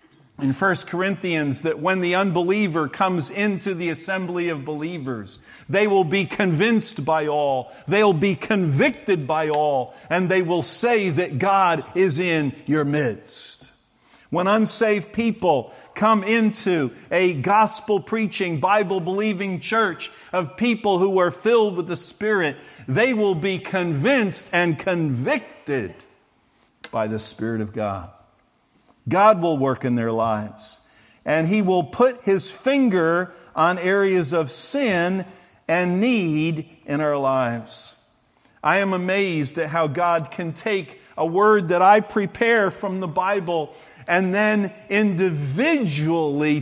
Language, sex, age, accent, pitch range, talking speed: English, male, 50-69, American, 145-195 Hz, 130 wpm